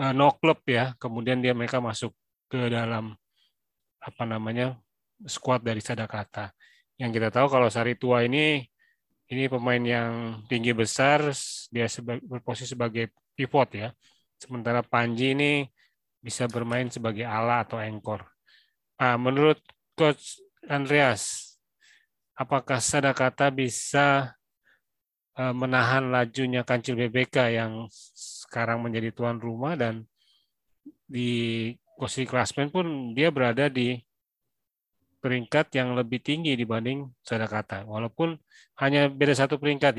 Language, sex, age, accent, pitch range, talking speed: Indonesian, male, 30-49, native, 115-135 Hz, 115 wpm